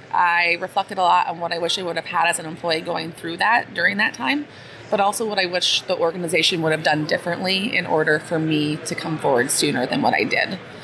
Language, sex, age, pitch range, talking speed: English, female, 30-49, 160-185 Hz, 245 wpm